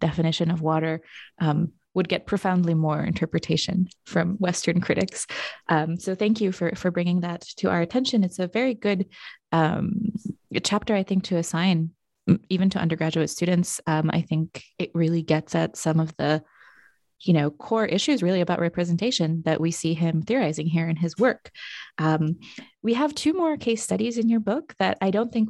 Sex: female